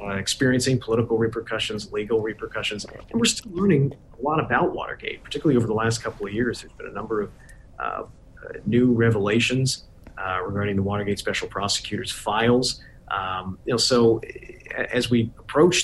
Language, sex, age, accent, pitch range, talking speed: English, male, 40-59, American, 100-120 Hz, 170 wpm